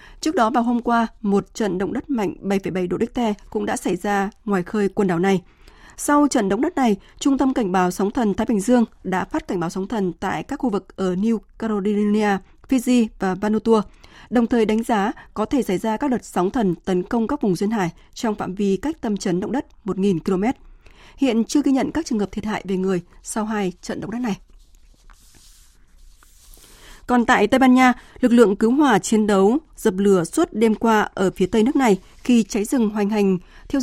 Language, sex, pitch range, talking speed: Vietnamese, female, 195-240 Hz, 220 wpm